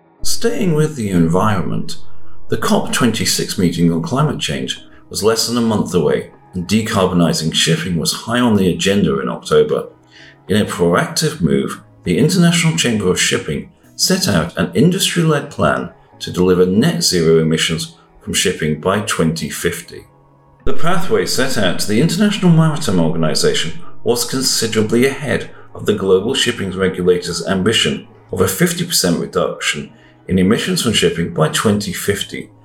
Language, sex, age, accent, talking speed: English, male, 40-59, British, 140 wpm